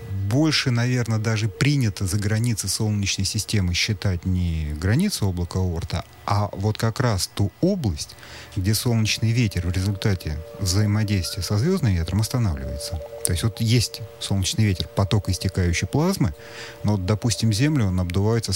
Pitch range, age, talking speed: 95-120 Hz, 40-59, 140 wpm